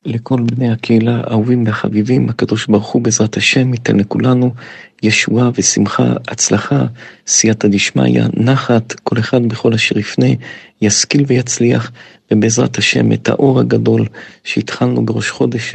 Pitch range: 110-125 Hz